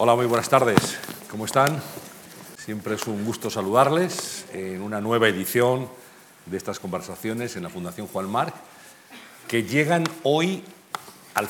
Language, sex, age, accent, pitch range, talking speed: Spanish, male, 50-69, Spanish, 95-125 Hz, 140 wpm